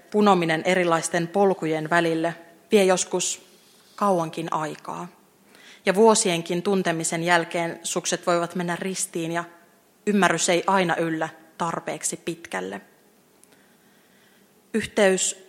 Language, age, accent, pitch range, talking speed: Finnish, 30-49, native, 170-205 Hz, 95 wpm